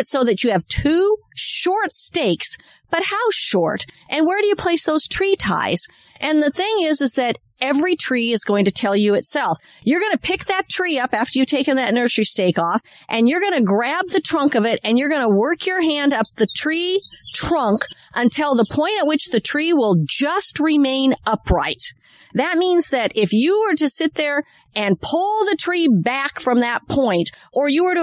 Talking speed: 210 wpm